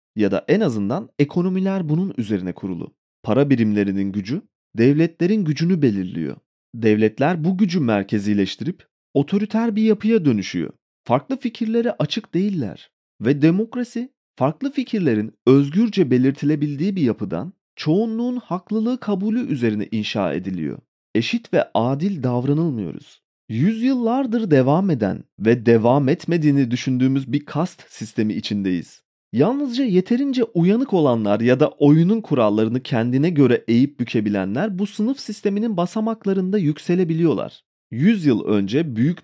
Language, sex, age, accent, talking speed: Turkish, male, 40-59, native, 115 wpm